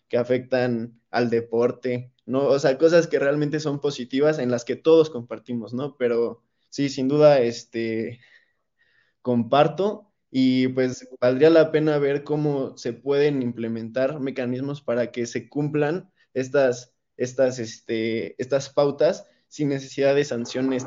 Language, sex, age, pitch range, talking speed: Spanish, male, 20-39, 120-145 Hz, 140 wpm